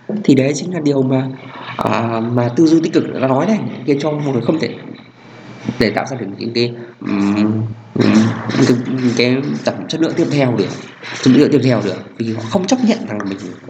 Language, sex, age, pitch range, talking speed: Vietnamese, male, 20-39, 110-145 Hz, 200 wpm